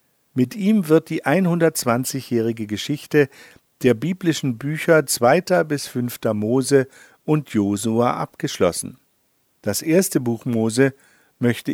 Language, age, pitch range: German, 50-69, 115-150 Hz